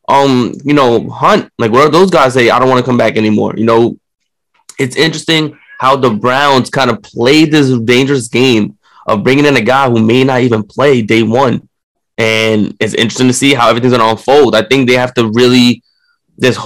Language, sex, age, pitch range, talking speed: English, male, 20-39, 115-130 Hz, 215 wpm